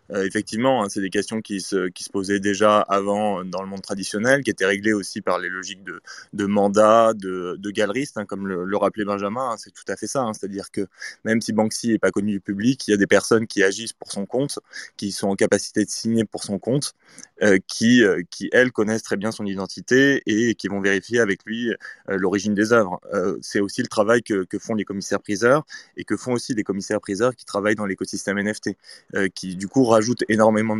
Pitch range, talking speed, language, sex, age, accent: 100-110 Hz, 230 wpm, French, male, 20-39, French